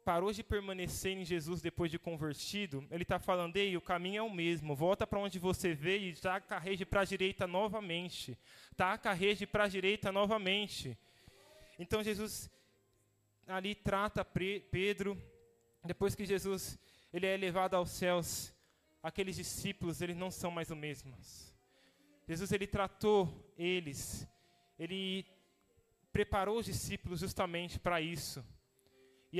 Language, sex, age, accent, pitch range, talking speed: Portuguese, male, 20-39, Brazilian, 170-205 Hz, 140 wpm